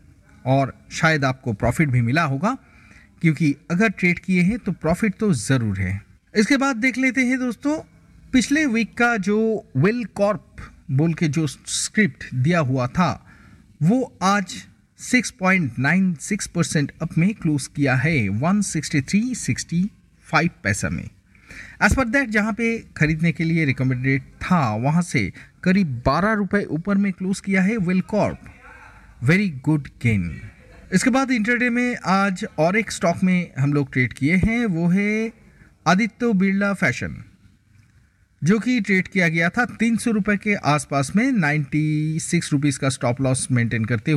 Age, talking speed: 50-69, 150 wpm